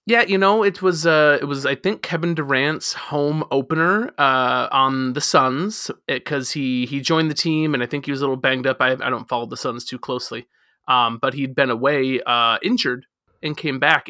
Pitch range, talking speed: 125-150 Hz, 215 wpm